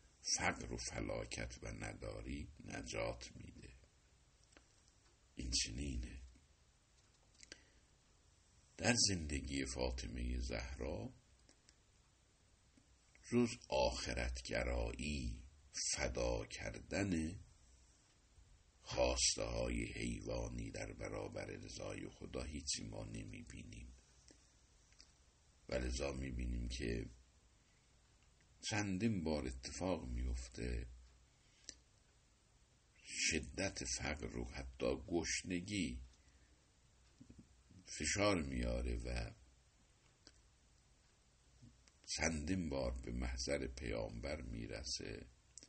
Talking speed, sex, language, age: 65 wpm, male, Persian, 60-79